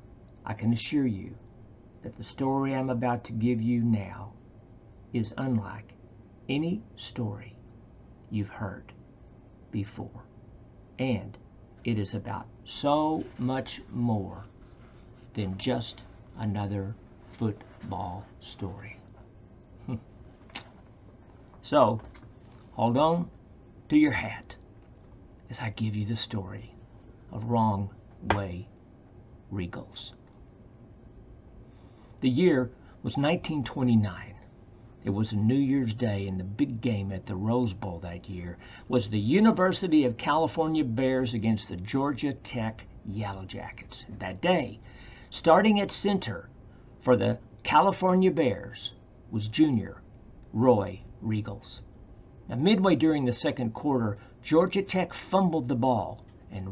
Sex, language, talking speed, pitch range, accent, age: male, English, 110 wpm, 105-125 Hz, American, 50-69